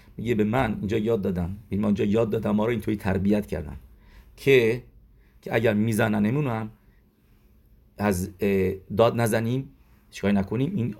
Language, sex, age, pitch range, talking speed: English, male, 50-69, 100-115 Hz, 135 wpm